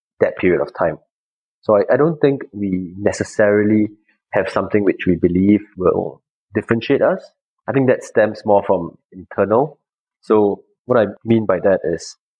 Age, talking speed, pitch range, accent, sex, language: 20-39, 160 wpm, 95-115 Hz, Malaysian, male, English